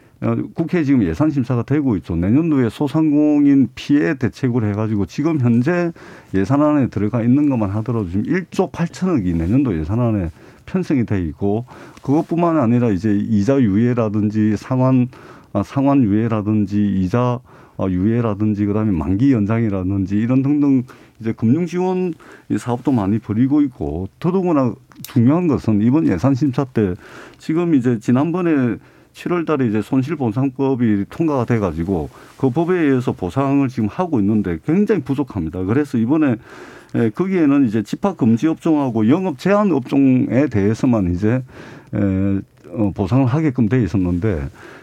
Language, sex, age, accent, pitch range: Korean, male, 50-69, native, 105-150 Hz